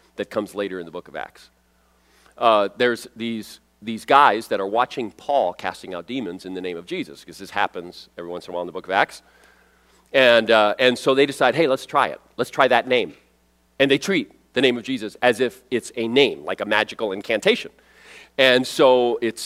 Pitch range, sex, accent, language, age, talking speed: 95-135 Hz, male, American, English, 40-59, 220 wpm